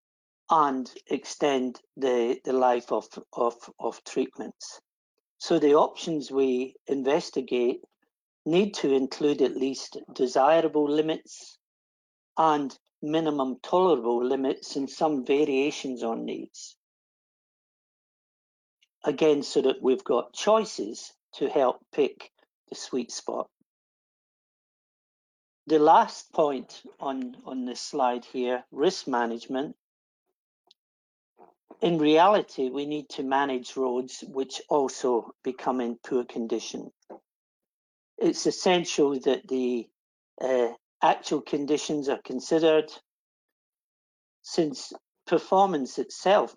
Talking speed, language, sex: 100 wpm, English, male